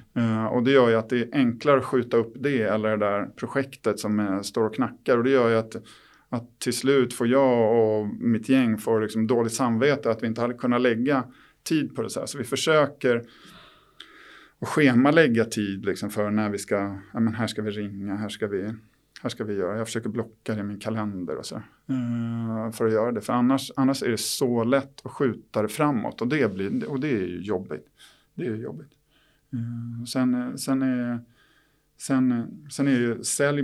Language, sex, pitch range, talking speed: Swedish, male, 110-130 Hz, 210 wpm